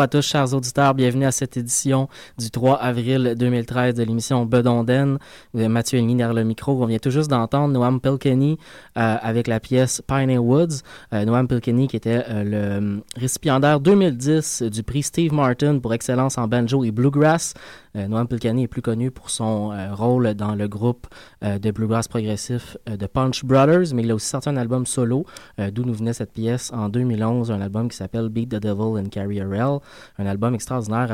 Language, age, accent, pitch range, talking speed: French, 20-39, Canadian, 115-140 Hz, 200 wpm